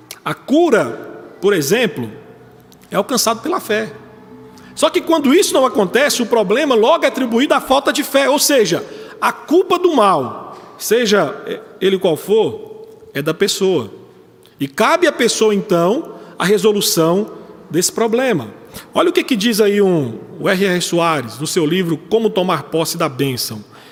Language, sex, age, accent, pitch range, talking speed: Portuguese, male, 40-59, Brazilian, 175-245 Hz, 160 wpm